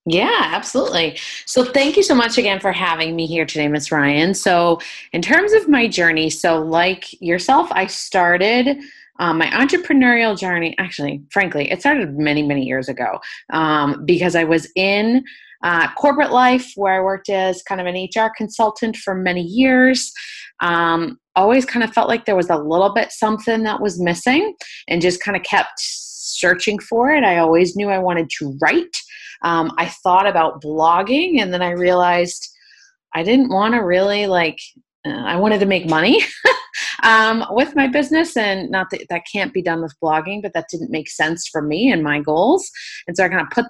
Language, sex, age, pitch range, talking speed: English, female, 30-49, 170-235 Hz, 190 wpm